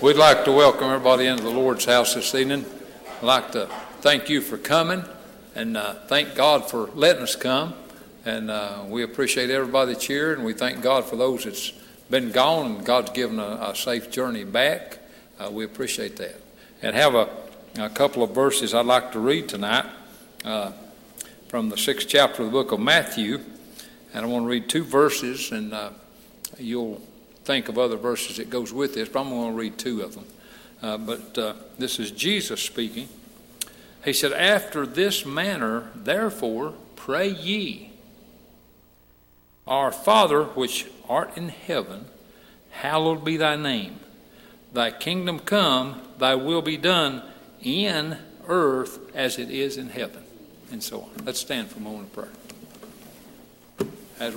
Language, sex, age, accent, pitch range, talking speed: English, male, 60-79, American, 120-160 Hz, 170 wpm